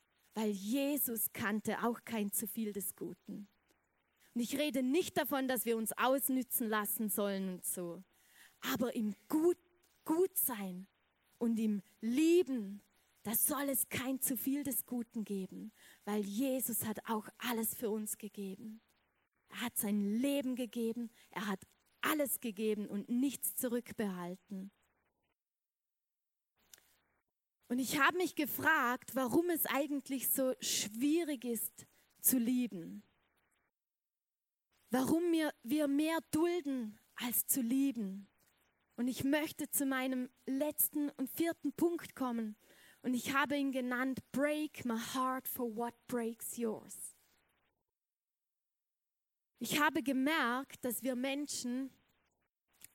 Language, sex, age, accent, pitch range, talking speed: German, female, 20-39, German, 215-275 Hz, 120 wpm